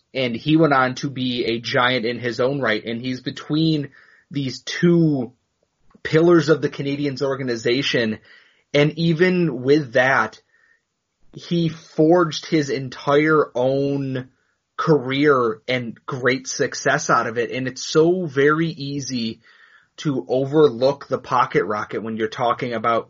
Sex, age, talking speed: male, 30-49, 135 wpm